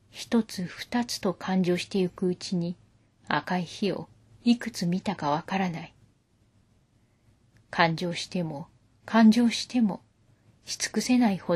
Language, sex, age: Japanese, female, 40-59